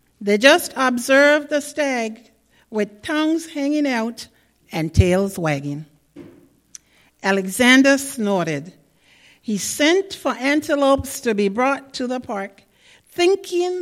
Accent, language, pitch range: American, English, 185-275 Hz